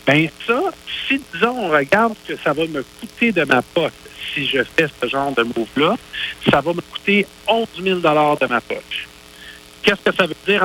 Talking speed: 205 wpm